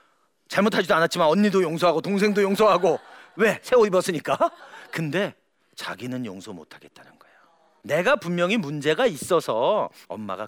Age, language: 40-59, Korean